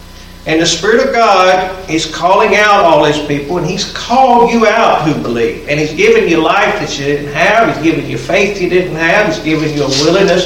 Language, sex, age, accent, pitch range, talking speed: English, male, 50-69, American, 145-215 Hz, 225 wpm